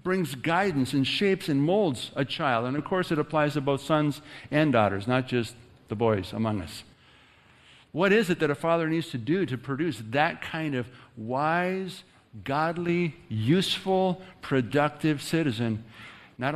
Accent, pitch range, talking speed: American, 135-185 Hz, 160 wpm